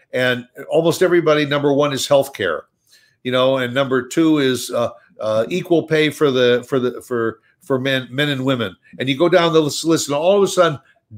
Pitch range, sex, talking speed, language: 120-145 Hz, male, 205 wpm, English